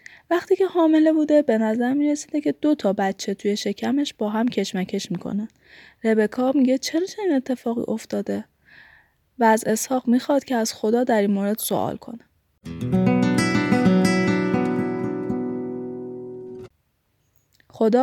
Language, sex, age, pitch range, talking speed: Persian, female, 10-29, 205-275 Hz, 120 wpm